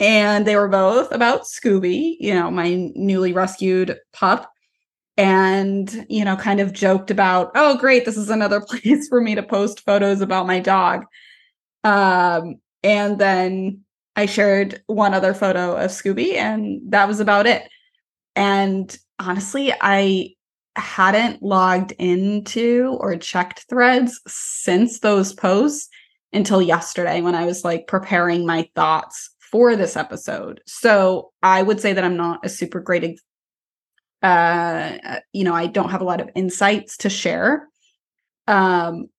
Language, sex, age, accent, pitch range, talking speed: English, female, 20-39, American, 180-215 Hz, 145 wpm